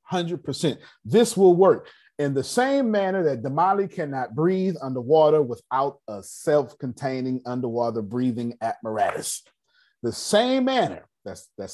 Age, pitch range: 30-49, 105-165 Hz